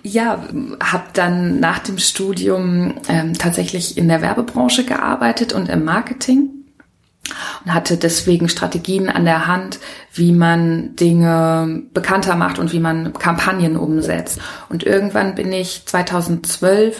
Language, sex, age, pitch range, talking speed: German, female, 20-39, 165-205 Hz, 130 wpm